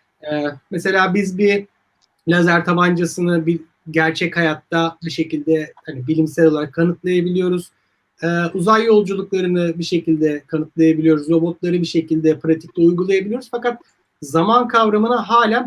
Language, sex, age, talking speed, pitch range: Turkish, male, 40-59, 115 wpm, 165-215 Hz